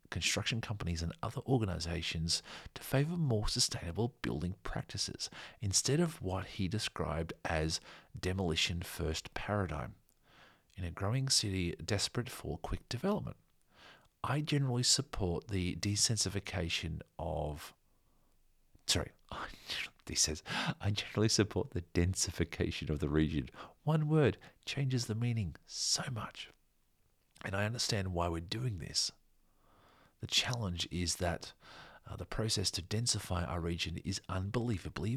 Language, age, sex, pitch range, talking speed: English, 40-59, male, 85-110 Hz, 125 wpm